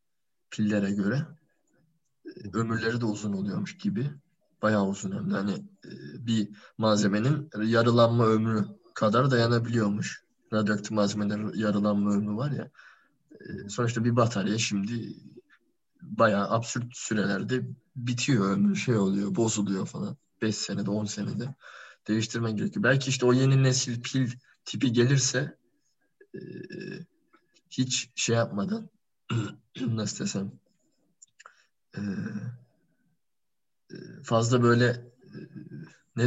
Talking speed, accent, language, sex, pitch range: 95 wpm, native, Turkish, male, 110-135 Hz